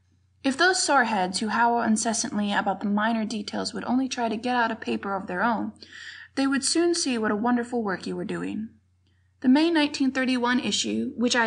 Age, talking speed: 20-39, 205 wpm